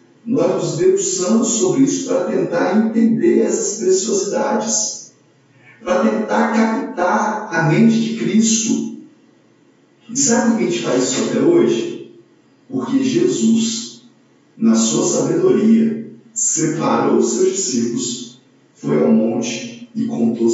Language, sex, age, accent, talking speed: Portuguese, male, 50-69, Brazilian, 120 wpm